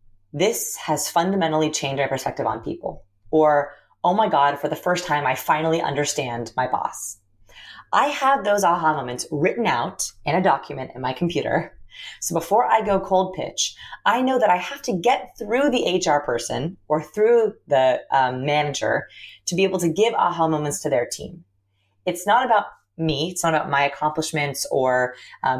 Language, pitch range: English, 130-180 Hz